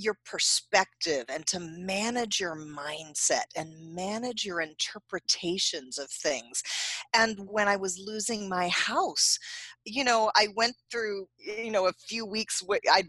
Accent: American